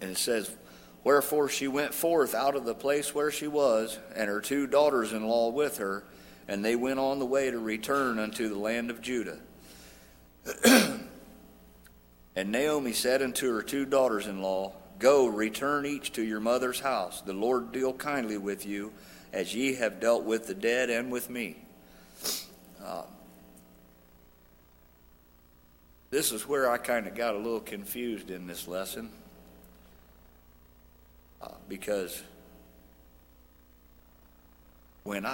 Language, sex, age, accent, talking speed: English, male, 50-69, American, 135 wpm